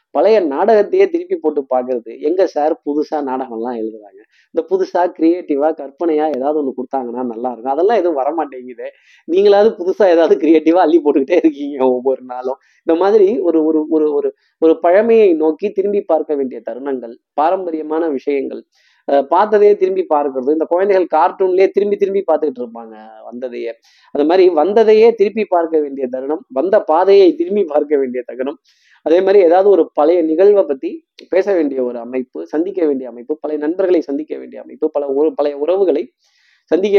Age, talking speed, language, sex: 20-39, 150 wpm, Tamil, male